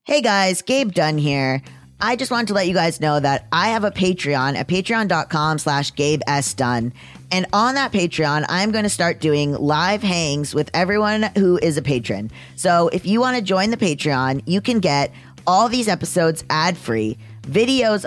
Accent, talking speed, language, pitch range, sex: American, 185 wpm, English, 150-205 Hz, female